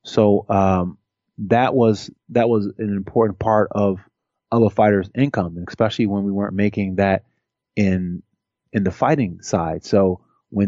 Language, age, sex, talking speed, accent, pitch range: English, 30-49, male, 150 wpm, American, 100-115 Hz